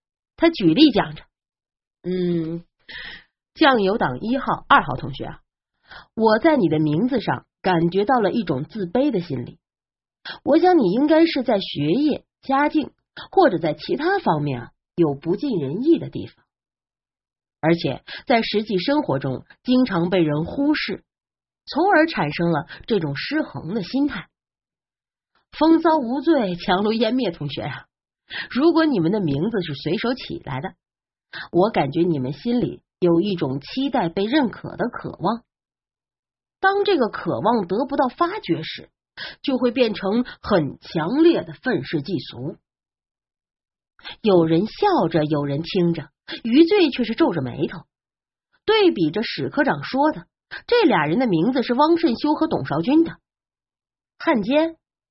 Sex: female